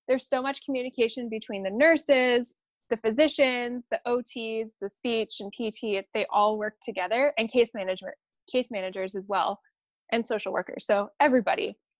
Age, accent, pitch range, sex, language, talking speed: 10-29, American, 210-255 Hz, female, English, 155 wpm